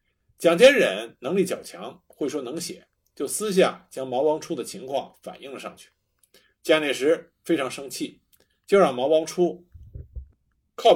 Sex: male